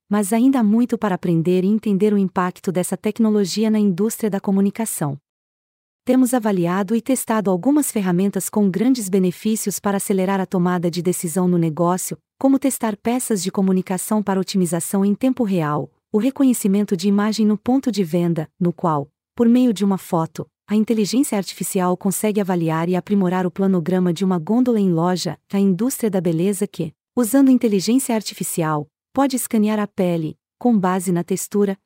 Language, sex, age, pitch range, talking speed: Portuguese, female, 40-59, 180-225 Hz, 165 wpm